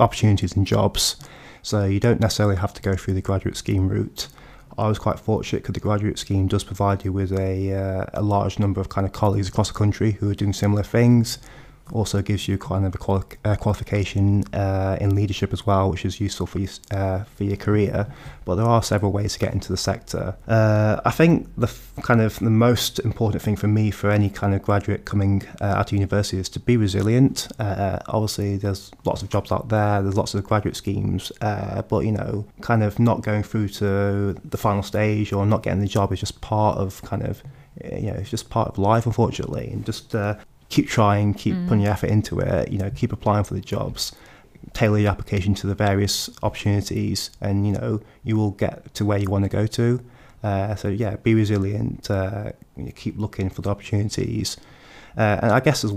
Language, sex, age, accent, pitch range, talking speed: English, male, 20-39, British, 100-110 Hz, 220 wpm